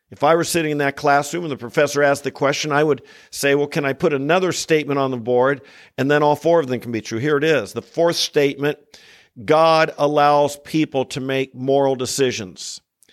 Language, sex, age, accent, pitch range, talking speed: English, male, 50-69, American, 140-185 Hz, 215 wpm